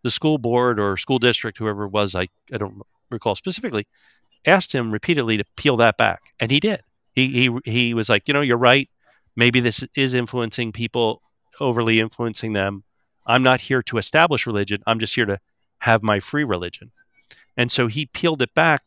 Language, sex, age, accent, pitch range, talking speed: English, male, 40-59, American, 105-130 Hz, 195 wpm